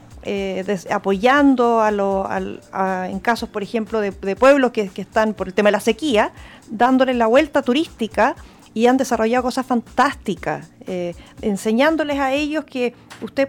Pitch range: 220-280 Hz